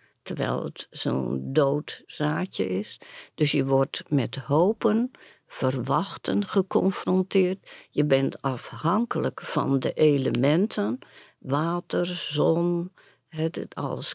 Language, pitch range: Dutch, 135-185 Hz